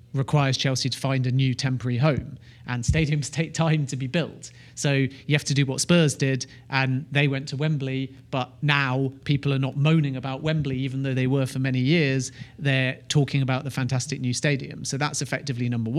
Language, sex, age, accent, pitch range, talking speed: English, male, 40-59, British, 130-145 Hz, 205 wpm